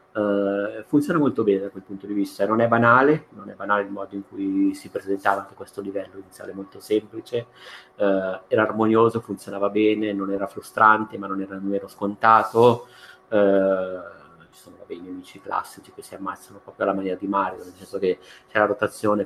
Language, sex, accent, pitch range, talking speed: Italian, male, native, 100-110 Hz, 185 wpm